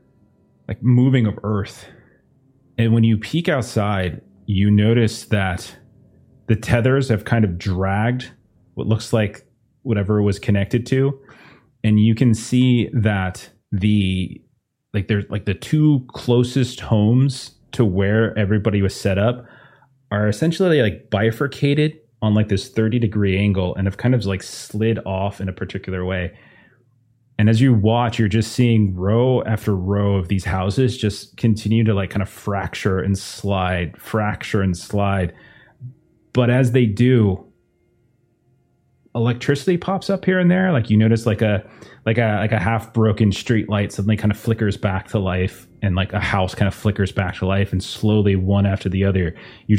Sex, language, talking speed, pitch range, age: male, English, 165 wpm, 100-120 Hz, 30-49